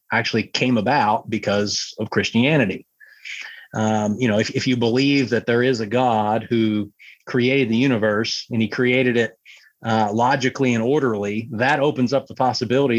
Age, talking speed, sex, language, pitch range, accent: 30-49, 160 wpm, male, English, 110-130 Hz, American